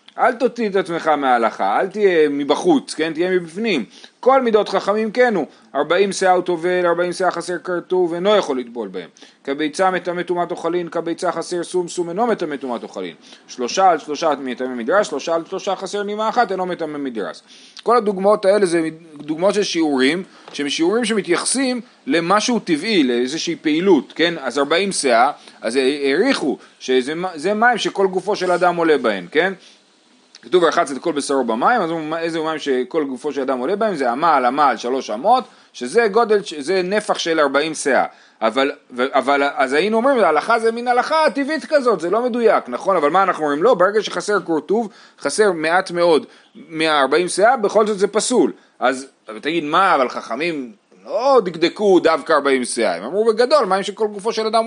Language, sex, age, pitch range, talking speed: Hebrew, male, 30-49, 155-215 Hz, 165 wpm